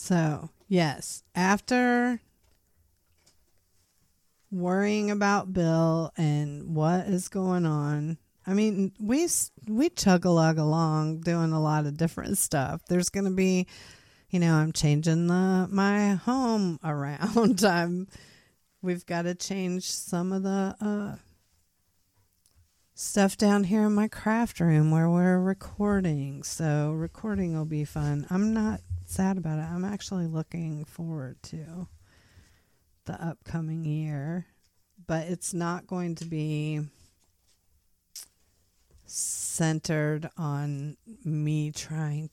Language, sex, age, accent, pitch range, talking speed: English, female, 40-59, American, 135-185 Hz, 120 wpm